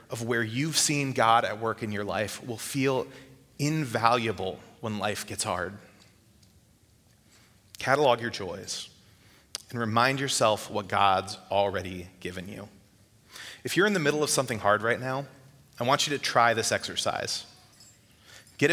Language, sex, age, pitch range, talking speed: English, male, 30-49, 105-135 Hz, 145 wpm